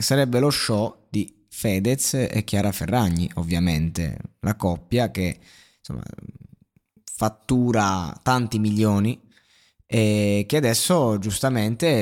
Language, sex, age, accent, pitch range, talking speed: Italian, male, 20-39, native, 100-125 Hz, 100 wpm